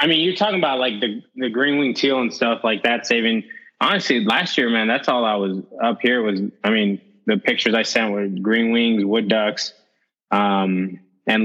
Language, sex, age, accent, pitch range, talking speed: English, male, 20-39, American, 100-115 Hz, 210 wpm